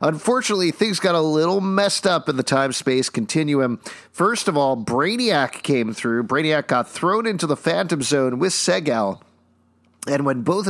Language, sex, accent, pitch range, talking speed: English, male, American, 125-165 Hz, 165 wpm